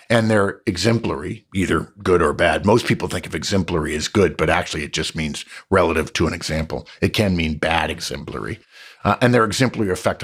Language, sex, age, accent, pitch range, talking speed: English, male, 50-69, American, 90-130 Hz, 195 wpm